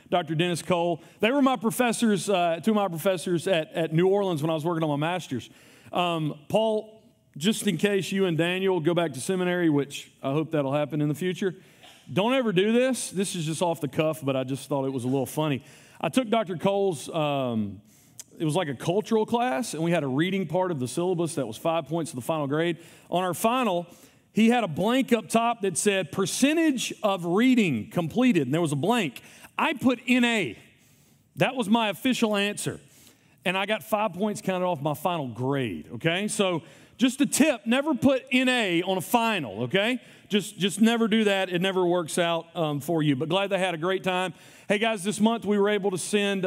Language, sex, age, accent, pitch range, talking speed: English, male, 40-59, American, 155-215 Hz, 215 wpm